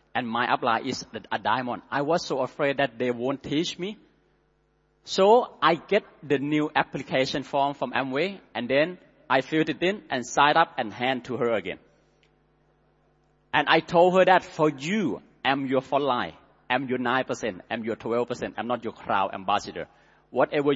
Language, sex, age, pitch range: Chinese, male, 30-49, 135-185 Hz